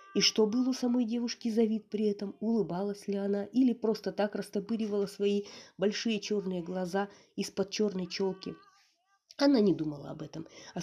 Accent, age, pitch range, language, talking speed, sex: native, 30-49, 185-250 Hz, Russian, 160 wpm, female